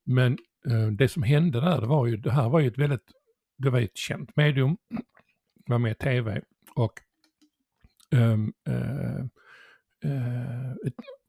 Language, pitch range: Swedish, 115-150 Hz